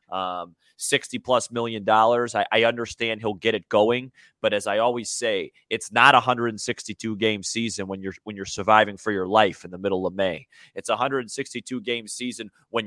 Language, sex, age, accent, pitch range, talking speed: English, male, 30-49, American, 110-130 Hz, 180 wpm